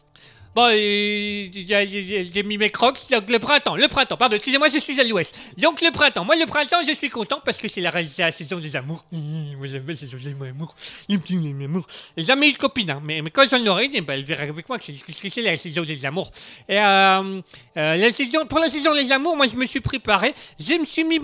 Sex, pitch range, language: male, 195-275 Hz, French